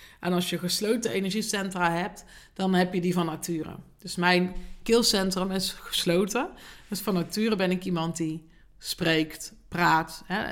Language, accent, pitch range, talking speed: Dutch, Dutch, 170-205 Hz, 155 wpm